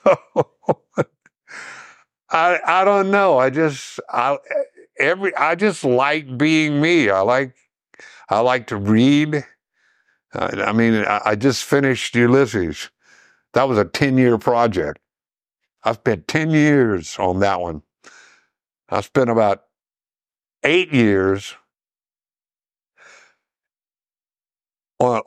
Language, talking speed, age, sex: English, 105 wpm, 60-79, male